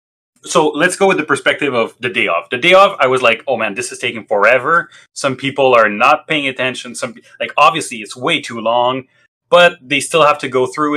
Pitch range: 120-150 Hz